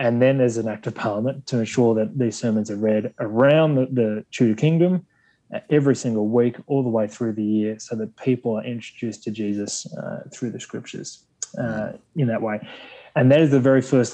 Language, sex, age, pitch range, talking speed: English, male, 20-39, 115-145 Hz, 210 wpm